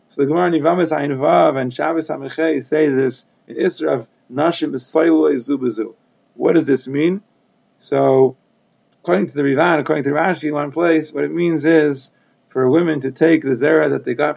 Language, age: English, 30-49